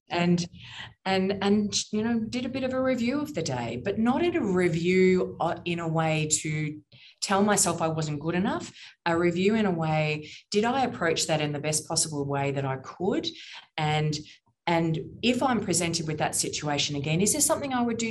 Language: English